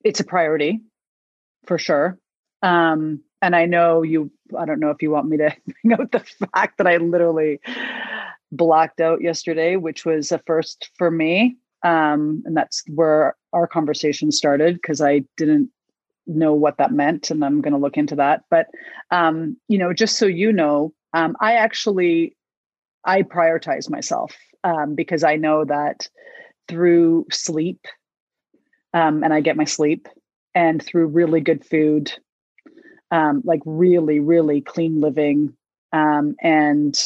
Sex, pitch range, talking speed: female, 150-175 Hz, 150 wpm